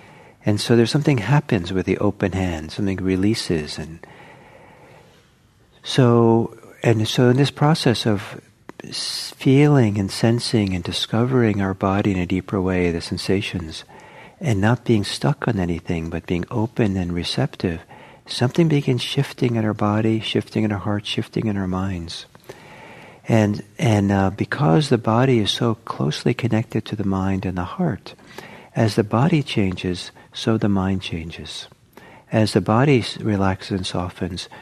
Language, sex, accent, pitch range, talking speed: English, male, American, 95-125 Hz, 150 wpm